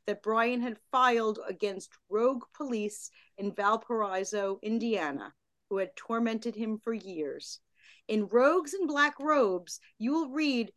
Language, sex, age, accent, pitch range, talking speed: English, female, 40-59, American, 220-285 Hz, 135 wpm